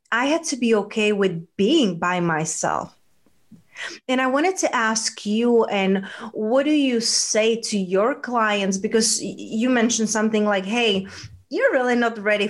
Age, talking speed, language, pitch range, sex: 30-49, 160 wpm, English, 205-240 Hz, female